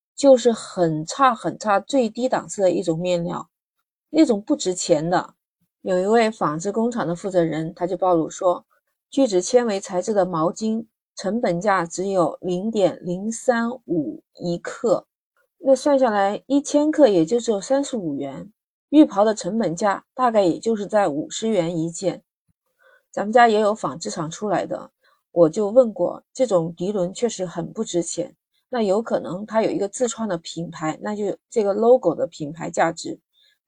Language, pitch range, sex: Chinese, 180-245 Hz, female